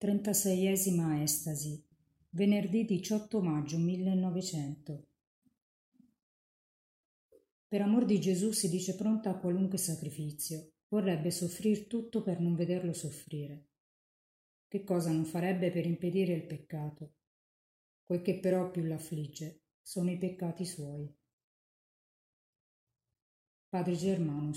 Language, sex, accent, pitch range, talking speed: Italian, female, native, 155-190 Hz, 105 wpm